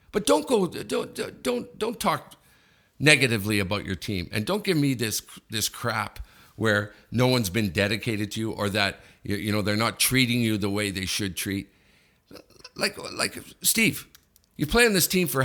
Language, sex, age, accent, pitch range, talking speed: English, male, 50-69, American, 100-140 Hz, 185 wpm